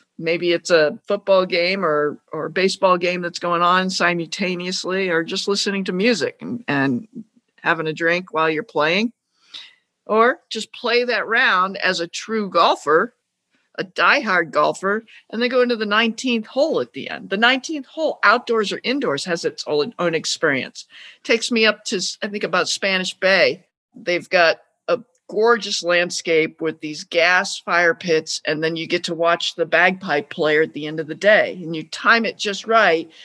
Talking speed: 175 wpm